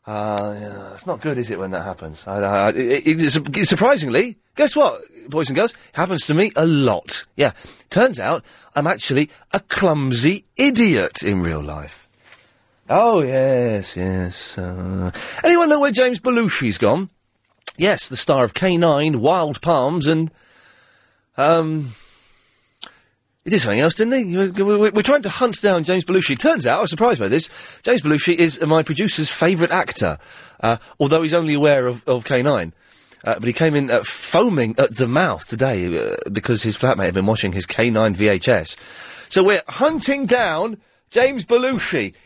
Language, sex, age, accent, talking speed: English, male, 30-49, British, 175 wpm